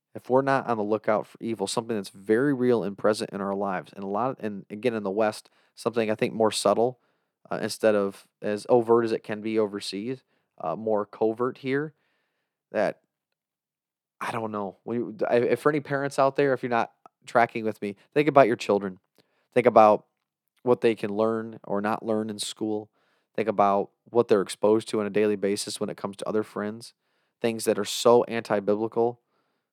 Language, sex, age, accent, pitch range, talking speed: English, male, 30-49, American, 105-120 Hz, 200 wpm